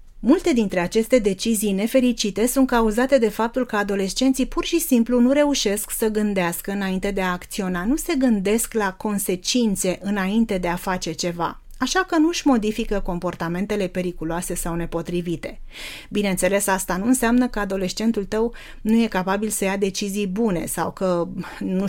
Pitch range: 185-235 Hz